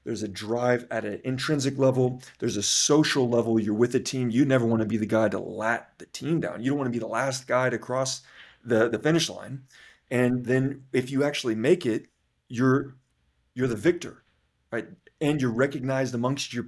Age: 30-49